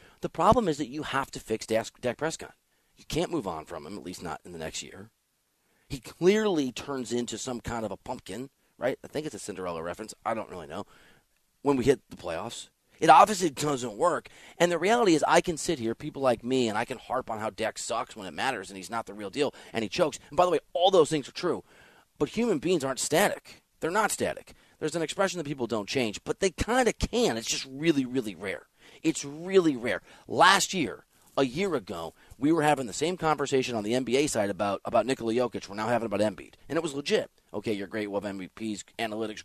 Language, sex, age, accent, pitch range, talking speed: English, male, 30-49, American, 115-175 Hz, 235 wpm